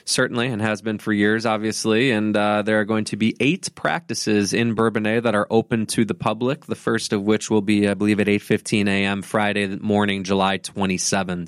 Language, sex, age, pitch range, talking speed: English, male, 20-39, 100-115 Hz, 205 wpm